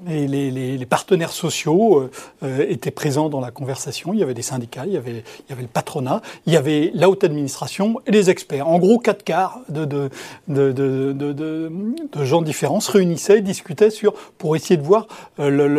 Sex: male